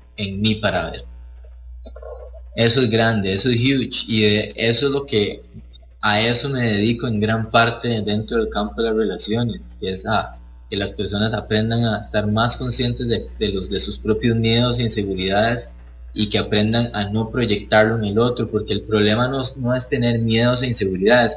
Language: English